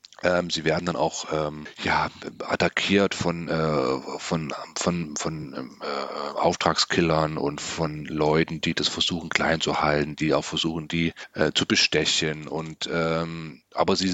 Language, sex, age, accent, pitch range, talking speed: German, male, 40-59, German, 85-100 Hz, 150 wpm